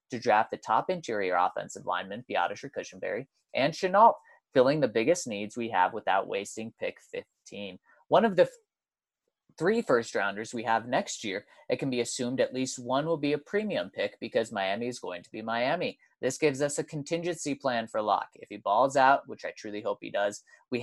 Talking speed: 195 wpm